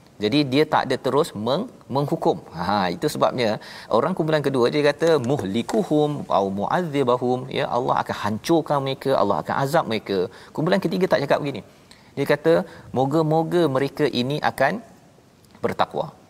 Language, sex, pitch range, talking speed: Malayalam, male, 110-145 Hz, 145 wpm